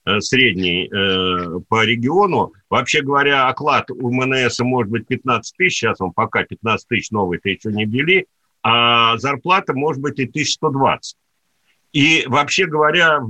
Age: 50-69